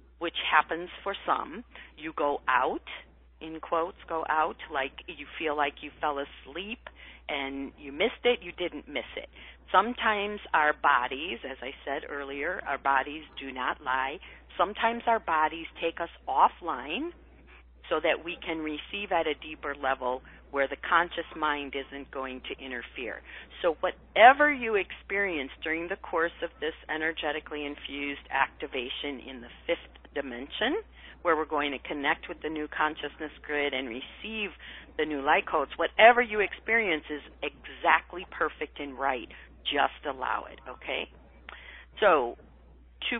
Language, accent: English, American